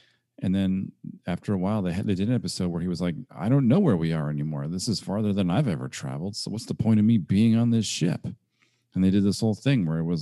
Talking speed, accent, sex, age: 280 wpm, American, male, 40-59